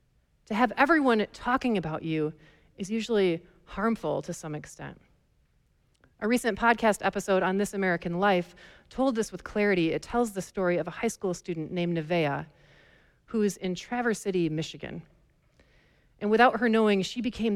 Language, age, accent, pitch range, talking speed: English, 40-59, American, 175-220 Hz, 160 wpm